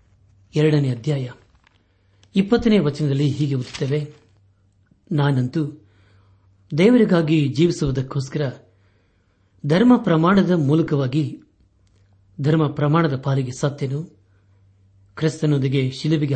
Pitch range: 100-150 Hz